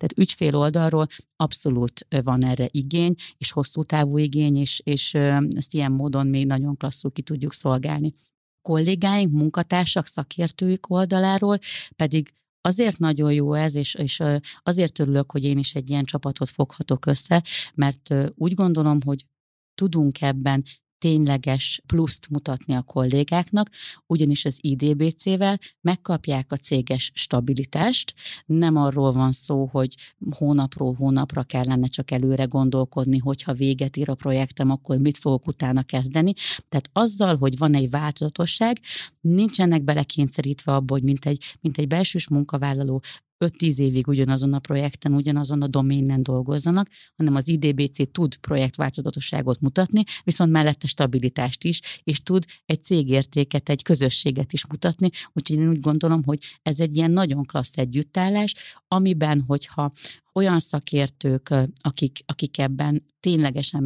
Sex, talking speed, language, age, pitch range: female, 135 wpm, Hungarian, 30-49, 135-165 Hz